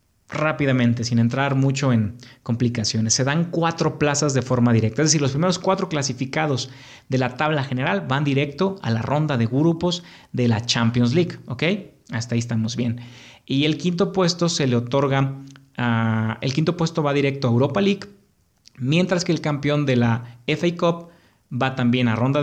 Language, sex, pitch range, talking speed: Spanish, male, 125-165 Hz, 180 wpm